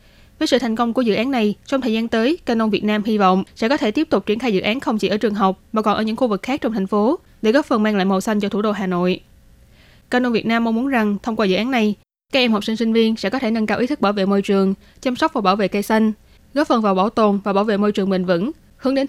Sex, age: female, 10-29